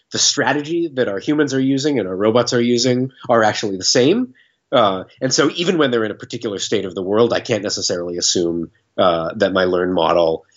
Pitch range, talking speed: 95-130 Hz, 215 wpm